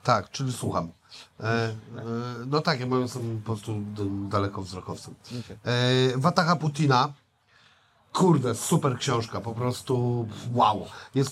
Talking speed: 125 wpm